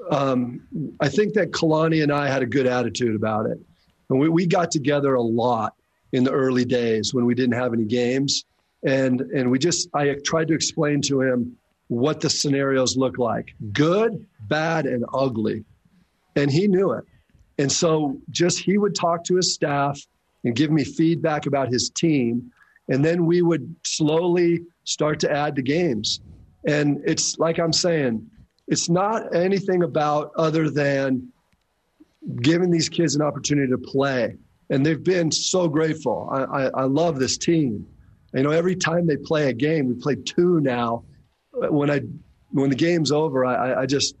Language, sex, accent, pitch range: English, male, American, 130-170 Hz